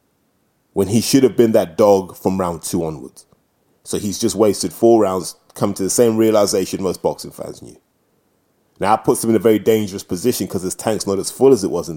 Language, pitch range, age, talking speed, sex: English, 105-150 Hz, 20-39, 225 wpm, male